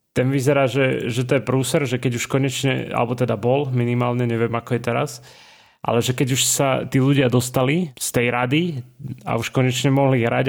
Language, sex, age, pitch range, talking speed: Slovak, male, 30-49, 120-140 Hz, 200 wpm